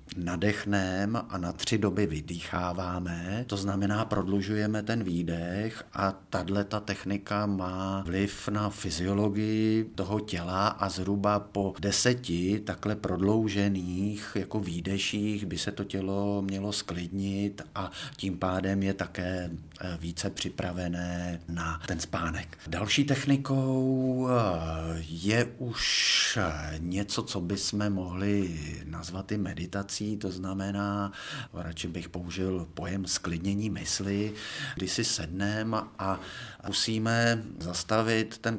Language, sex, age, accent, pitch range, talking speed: Czech, male, 50-69, native, 90-105 Hz, 110 wpm